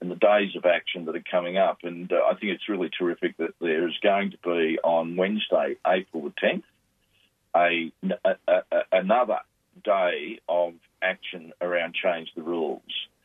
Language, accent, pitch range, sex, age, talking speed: English, Australian, 90-115 Hz, male, 50-69, 170 wpm